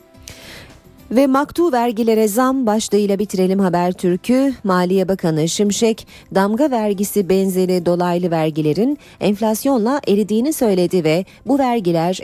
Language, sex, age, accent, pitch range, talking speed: Turkish, female, 40-59, native, 165-220 Hz, 110 wpm